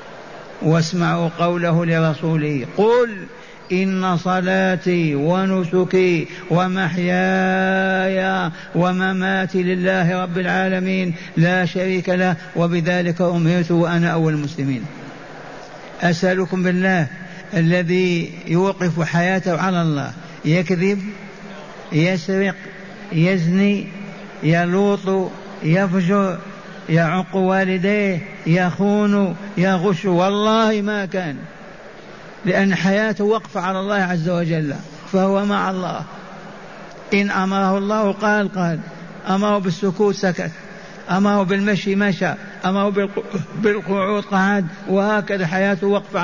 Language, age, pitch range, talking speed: Arabic, 60-79, 175-195 Hz, 85 wpm